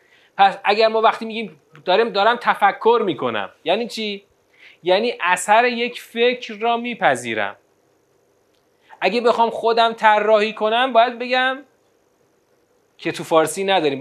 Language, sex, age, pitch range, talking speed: Persian, male, 30-49, 145-230 Hz, 120 wpm